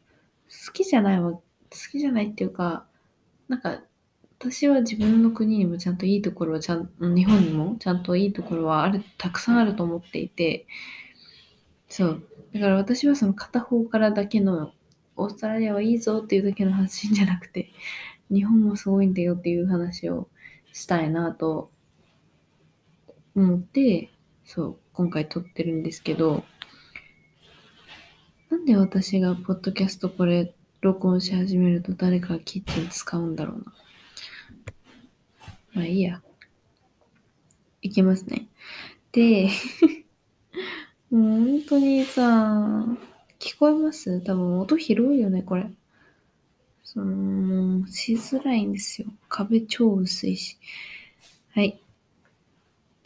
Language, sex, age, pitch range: Japanese, female, 20-39, 180-225 Hz